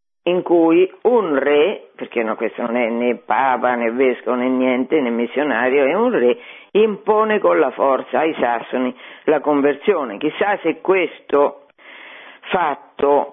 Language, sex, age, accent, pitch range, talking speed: Italian, female, 50-69, native, 145-210 Hz, 140 wpm